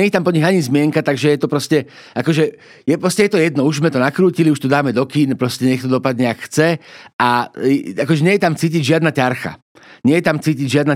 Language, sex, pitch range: Slovak, male, 130-155 Hz